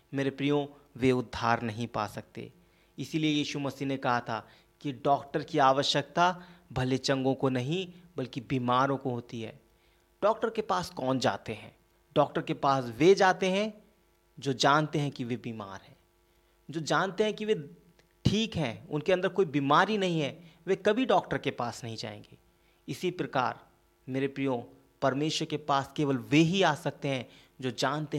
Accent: native